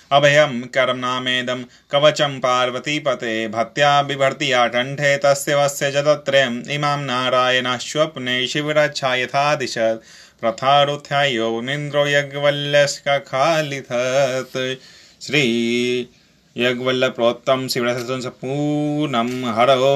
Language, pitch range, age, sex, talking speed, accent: Hindi, 120-145 Hz, 20-39, male, 65 wpm, native